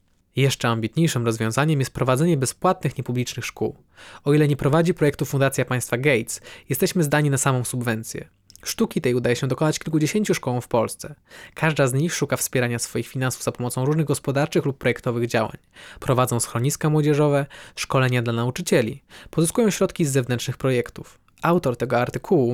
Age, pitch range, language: 20-39, 125-155 Hz, Polish